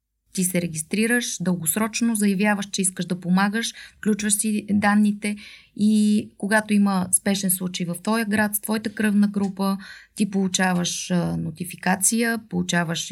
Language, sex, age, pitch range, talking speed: Bulgarian, female, 20-39, 185-220 Hz, 135 wpm